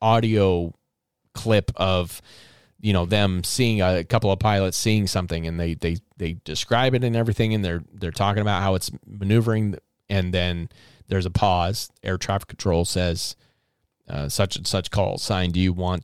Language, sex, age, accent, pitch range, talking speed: English, male, 30-49, American, 95-125 Hz, 175 wpm